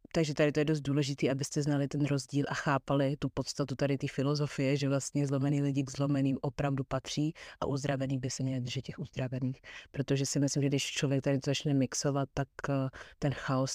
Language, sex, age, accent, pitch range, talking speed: Czech, female, 30-49, native, 135-160 Hz, 200 wpm